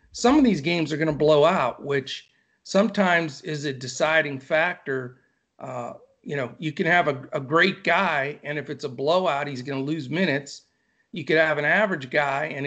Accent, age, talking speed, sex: American, 50-69, 200 wpm, male